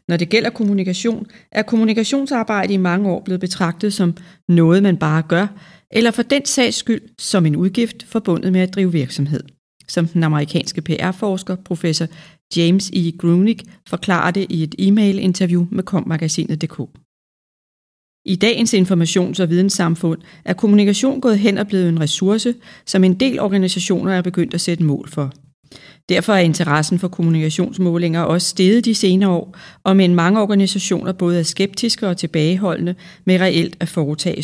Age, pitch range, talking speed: 40-59, 165-195 Hz, 160 wpm